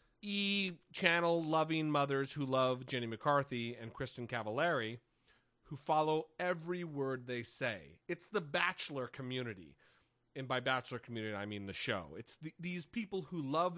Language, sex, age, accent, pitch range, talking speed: English, male, 30-49, American, 125-175 Hz, 155 wpm